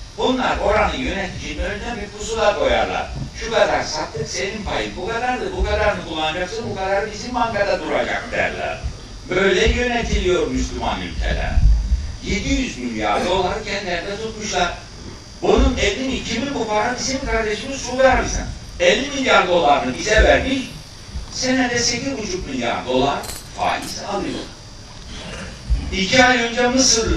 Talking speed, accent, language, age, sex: 125 wpm, native, Turkish, 60-79, male